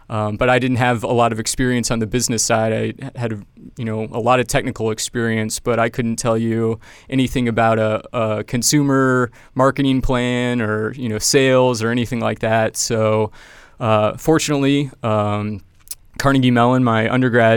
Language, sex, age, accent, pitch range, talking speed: English, male, 20-39, American, 110-125 Hz, 170 wpm